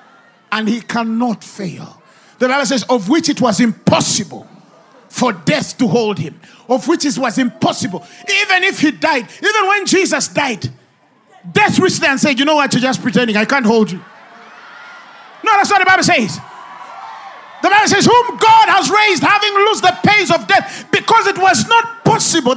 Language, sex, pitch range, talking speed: English, male, 240-355 Hz, 185 wpm